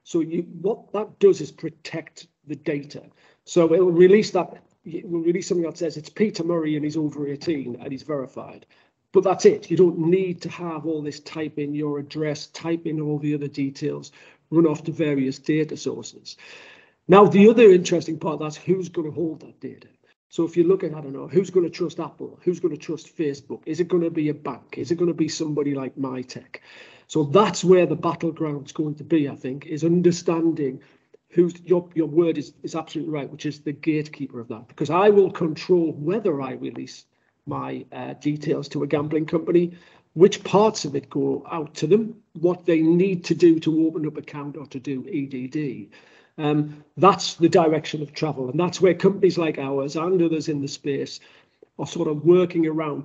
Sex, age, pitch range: male, 40-59, 145-175 Hz